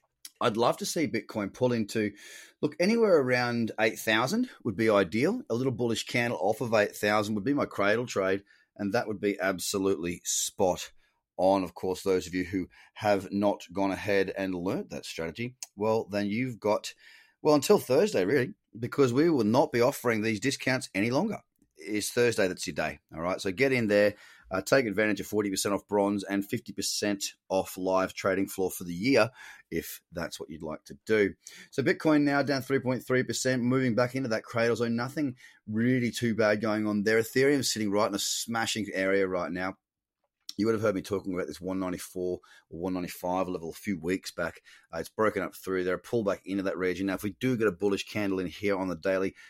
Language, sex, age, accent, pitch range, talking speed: English, male, 30-49, Australian, 95-120 Hz, 200 wpm